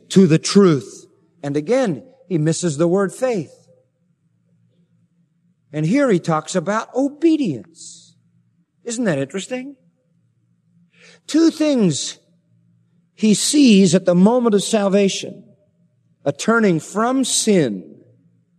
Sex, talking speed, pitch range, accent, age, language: male, 105 wpm, 160-200 Hz, American, 50-69, English